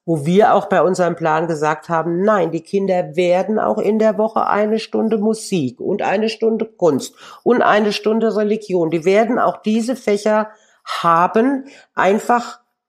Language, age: German, 50-69